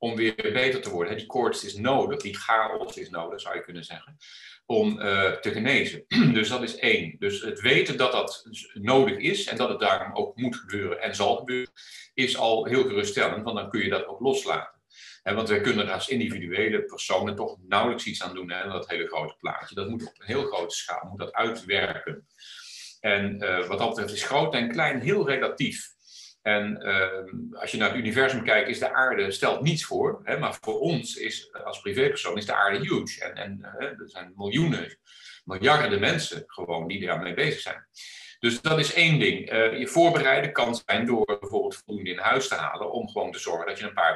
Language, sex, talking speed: English, male, 205 wpm